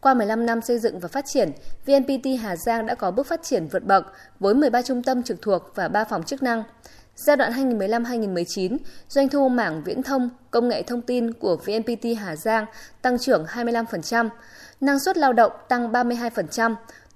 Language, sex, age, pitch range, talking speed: Vietnamese, female, 20-39, 205-265 Hz, 190 wpm